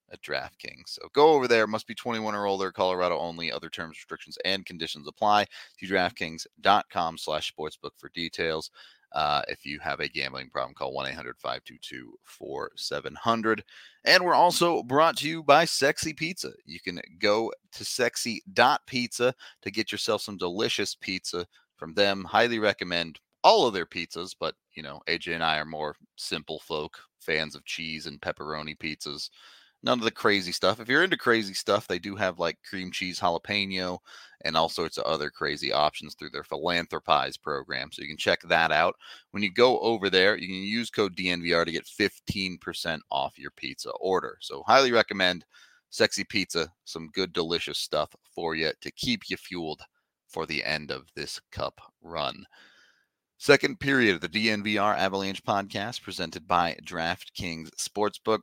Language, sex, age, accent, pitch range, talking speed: English, male, 30-49, American, 85-110 Hz, 165 wpm